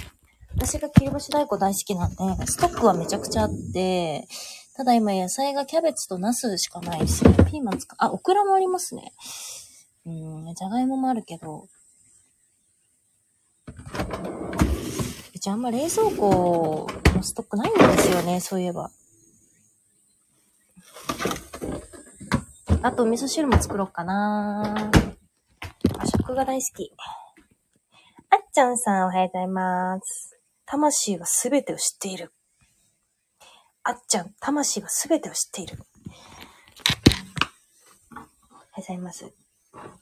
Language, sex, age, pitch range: Japanese, female, 20-39, 170-250 Hz